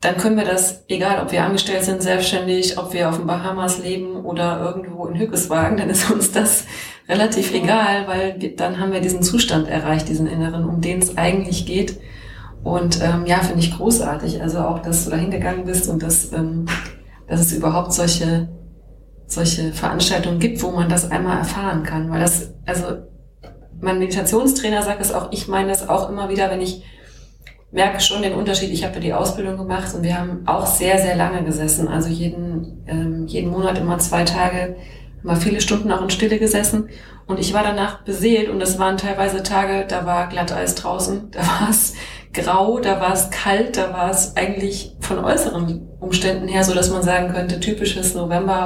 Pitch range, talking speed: 170-195 Hz, 190 wpm